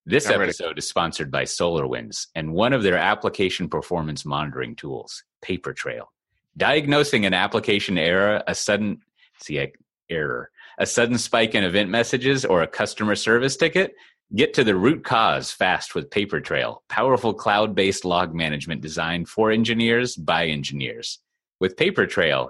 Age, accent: 30-49, American